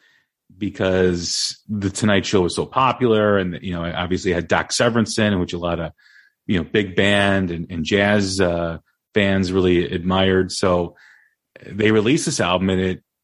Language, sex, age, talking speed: English, male, 30-49, 165 wpm